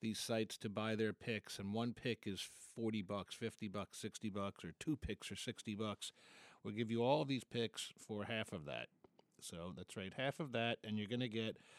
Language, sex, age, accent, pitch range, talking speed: English, male, 50-69, American, 105-120 Hz, 230 wpm